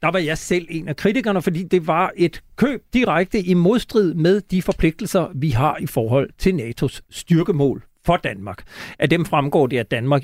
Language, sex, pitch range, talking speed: Danish, male, 135-180 Hz, 195 wpm